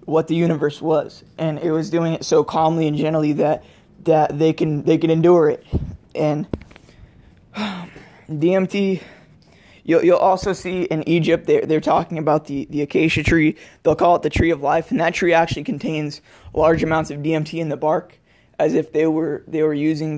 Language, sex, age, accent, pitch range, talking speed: English, male, 20-39, American, 155-170 Hz, 185 wpm